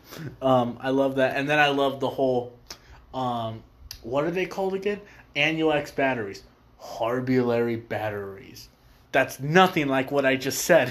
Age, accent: 20-39, American